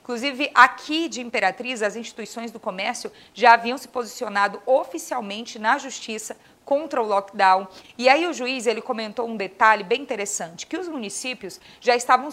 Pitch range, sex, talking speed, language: 205-260 Hz, female, 155 wpm, Portuguese